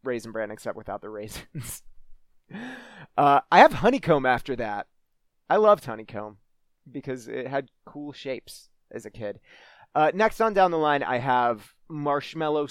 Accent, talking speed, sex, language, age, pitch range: American, 150 wpm, male, English, 30-49, 120-160 Hz